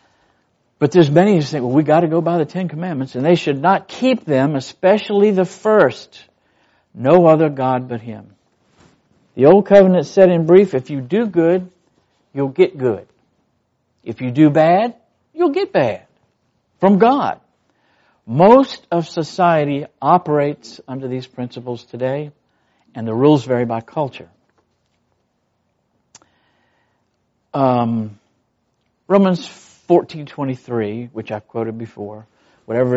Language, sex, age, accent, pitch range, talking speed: English, male, 60-79, American, 125-180 Hz, 135 wpm